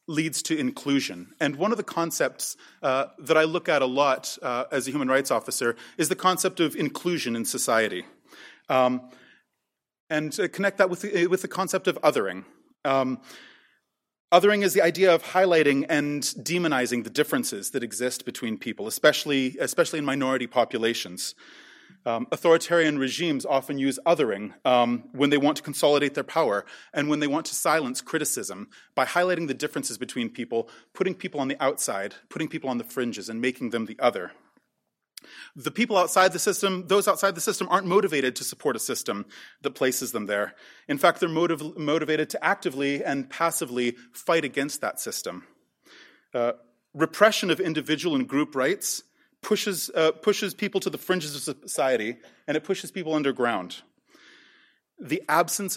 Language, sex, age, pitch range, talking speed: English, male, 30-49, 130-180 Hz, 170 wpm